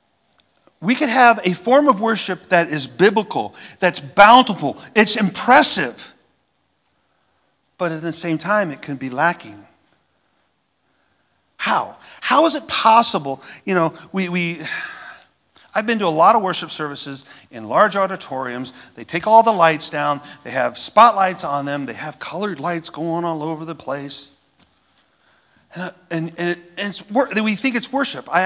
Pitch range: 160-235 Hz